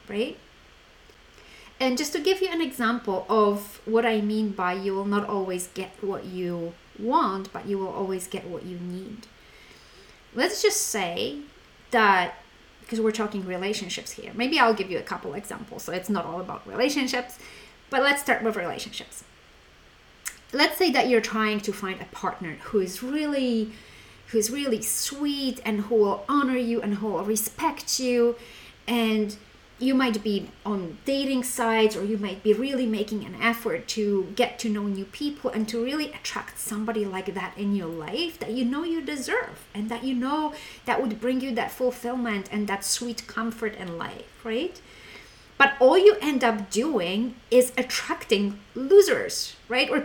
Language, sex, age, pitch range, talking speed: English, female, 30-49, 210-290 Hz, 175 wpm